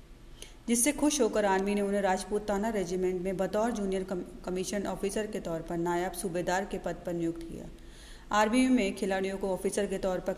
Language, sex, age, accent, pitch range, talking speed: Hindi, female, 40-59, native, 185-215 Hz, 190 wpm